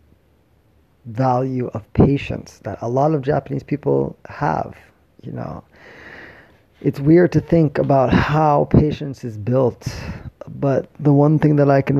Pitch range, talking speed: 110-135 Hz, 140 wpm